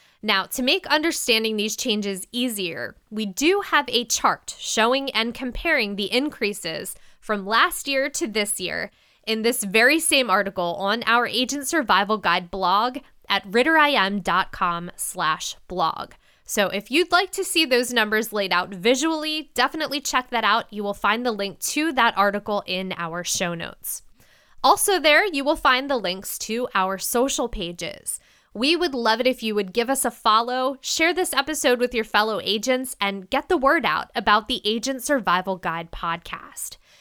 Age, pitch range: 10-29, 195-270 Hz